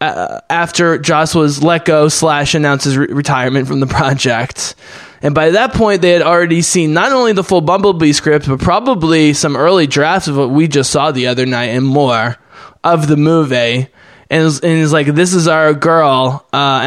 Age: 20-39